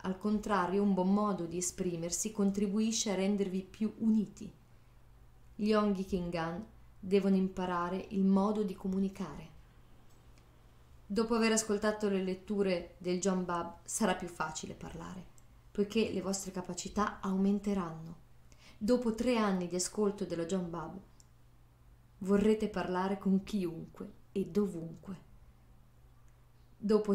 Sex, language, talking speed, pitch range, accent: female, Italian, 115 wpm, 170-205 Hz, native